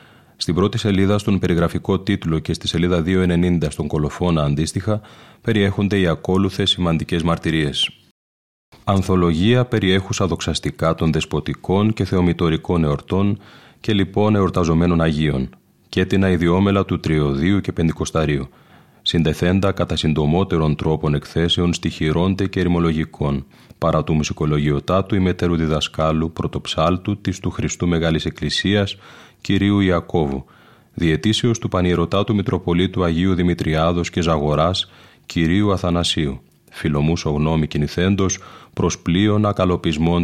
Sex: male